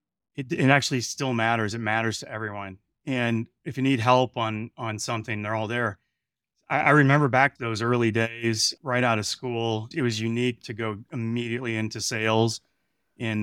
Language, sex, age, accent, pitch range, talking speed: English, male, 30-49, American, 110-130 Hz, 185 wpm